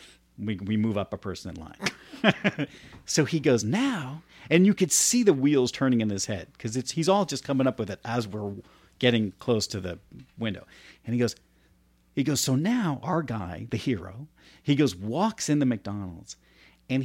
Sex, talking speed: male, 195 wpm